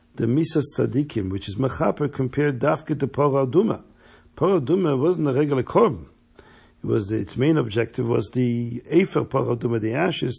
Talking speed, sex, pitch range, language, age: 155 wpm, male, 120-155 Hz, English, 50-69